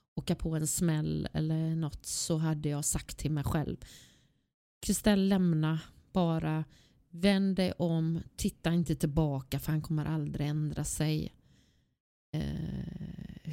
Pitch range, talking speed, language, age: 155-195 Hz, 130 wpm, Swedish, 30-49